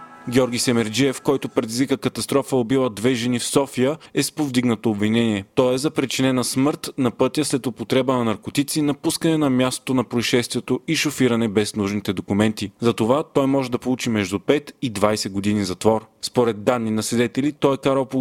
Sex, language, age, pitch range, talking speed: male, Bulgarian, 30-49, 115-140 Hz, 185 wpm